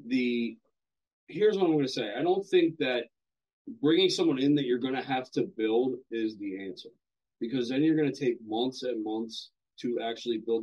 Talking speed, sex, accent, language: 205 wpm, male, American, English